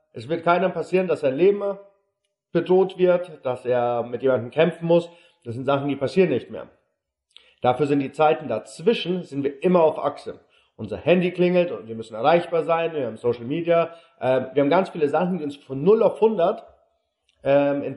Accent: German